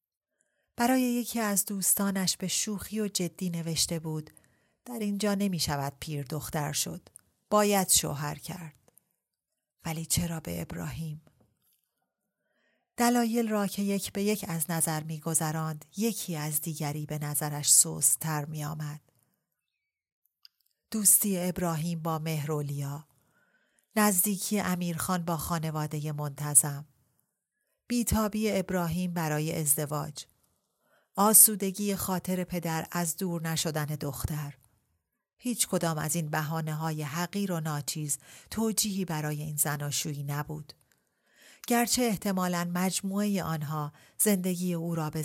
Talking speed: 110 wpm